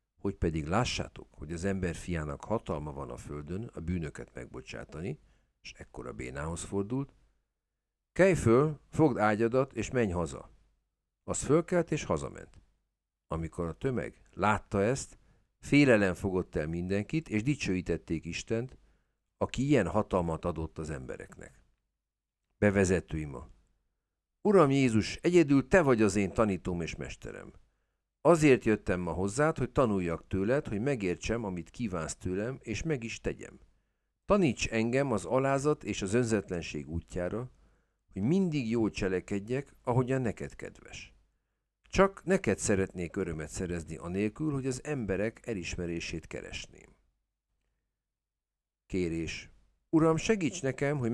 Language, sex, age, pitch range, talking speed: Hungarian, male, 50-69, 90-130 Hz, 125 wpm